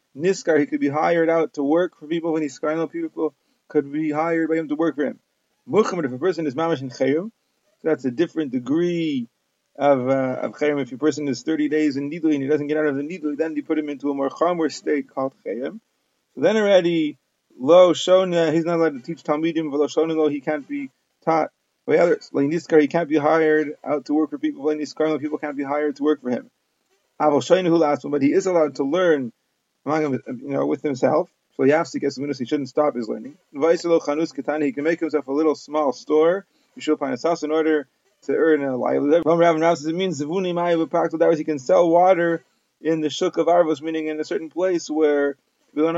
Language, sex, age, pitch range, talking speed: English, male, 30-49, 145-165 Hz, 200 wpm